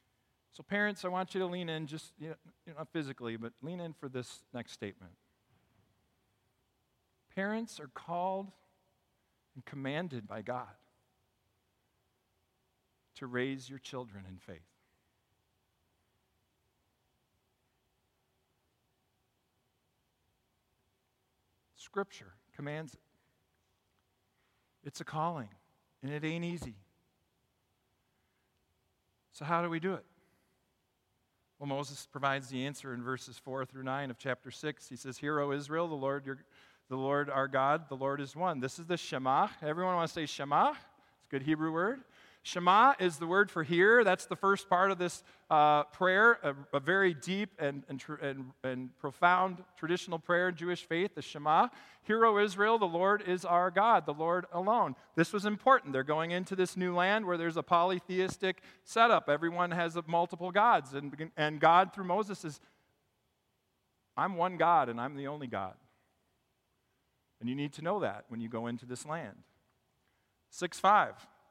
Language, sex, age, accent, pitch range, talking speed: English, male, 50-69, American, 125-180 Hz, 150 wpm